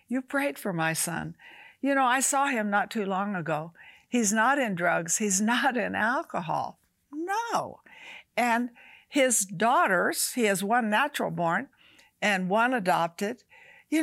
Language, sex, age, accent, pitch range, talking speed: English, female, 60-79, American, 185-265 Hz, 150 wpm